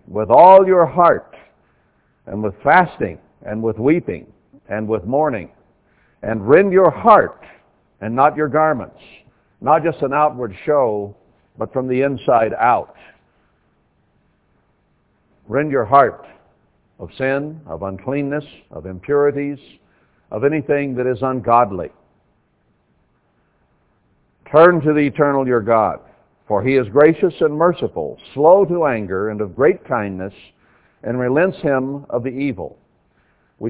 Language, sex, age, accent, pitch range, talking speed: English, male, 60-79, American, 110-145 Hz, 125 wpm